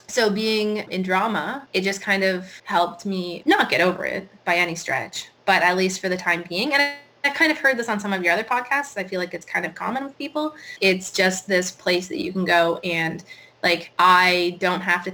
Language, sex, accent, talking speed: English, female, American, 240 wpm